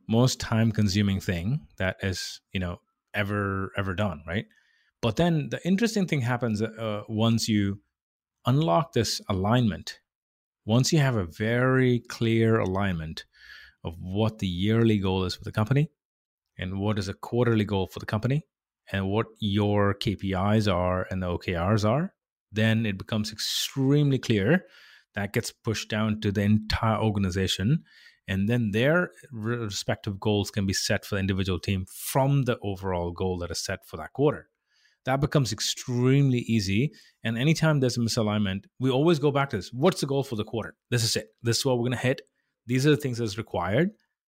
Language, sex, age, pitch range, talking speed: English, male, 30-49, 100-125 Hz, 175 wpm